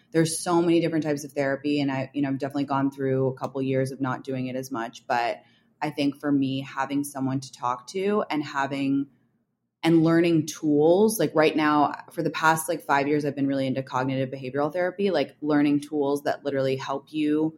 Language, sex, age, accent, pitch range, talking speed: English, female, 20-39, American, 140-165 Hz, 210 wpm